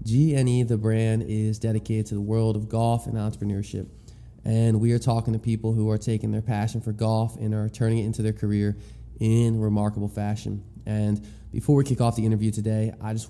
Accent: American